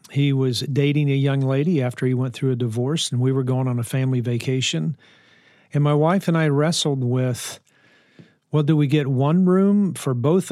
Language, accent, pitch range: English, American, 130-155 Hz